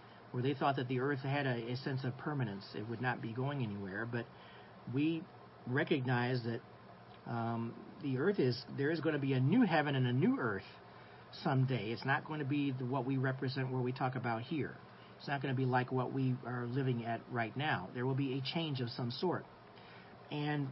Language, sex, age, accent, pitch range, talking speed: English, male, 50-69, American, 125-145 Hz, 215 wpm